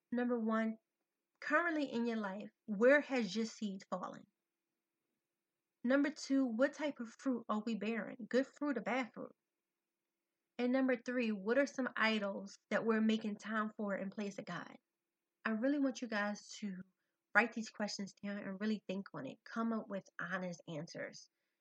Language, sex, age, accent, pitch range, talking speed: English, female, 30-49, American, 205-245 Hz, 170 wpm